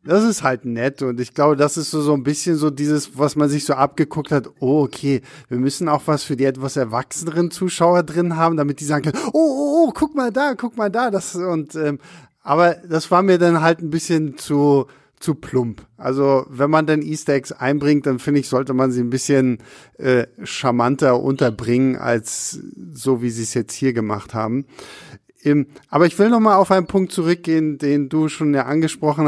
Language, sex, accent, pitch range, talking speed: German, male, German, 135-165 Hz, 210 wpm